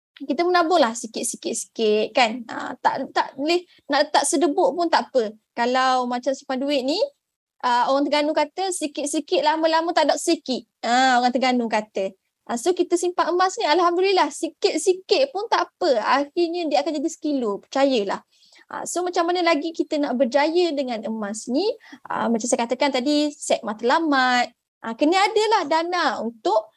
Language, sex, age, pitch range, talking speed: Malay, female, 20-39, 235-320 Hz, 160 wpm